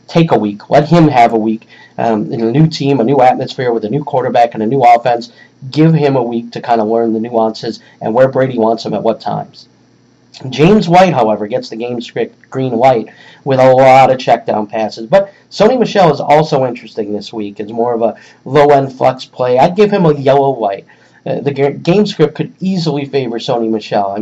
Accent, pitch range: American, 115-145 Hz